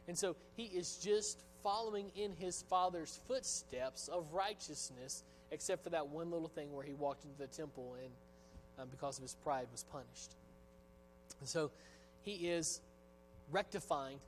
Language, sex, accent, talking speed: English, male, American, 155 wpm